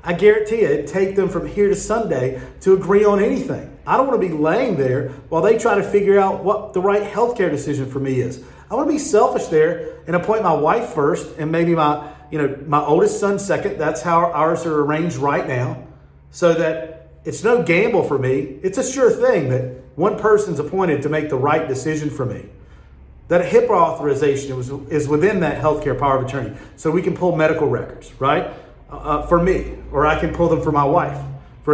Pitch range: 140-200 Hz